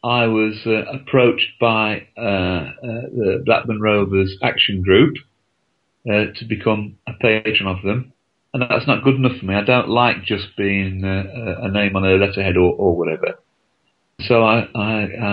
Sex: male